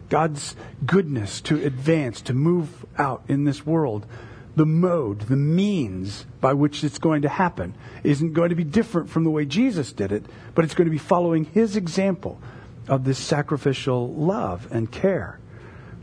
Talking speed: 170 wpm